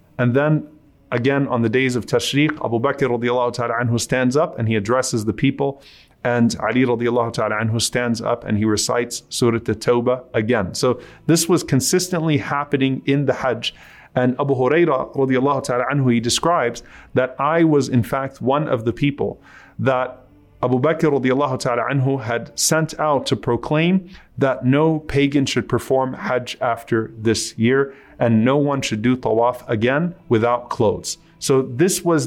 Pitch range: 120-150 Hz